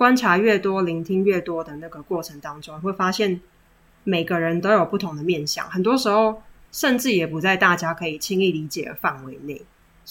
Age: 10-29